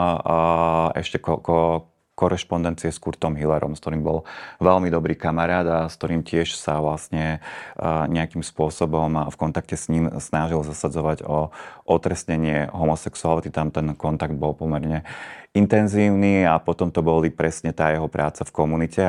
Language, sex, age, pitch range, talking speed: Slovak, male, 30-49, 80-85 Hz, 145 wpm